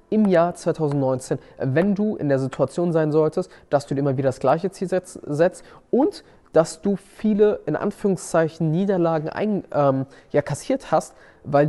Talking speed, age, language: 165 wpm, 20-39, German